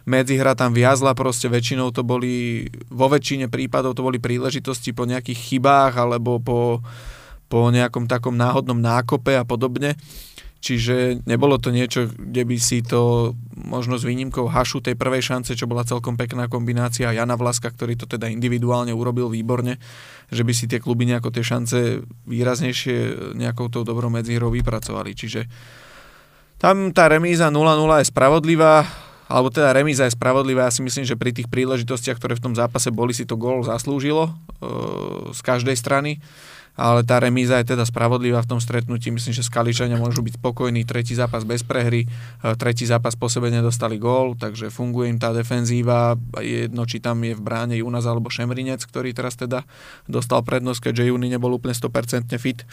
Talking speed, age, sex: 175 wpm, 20-39, male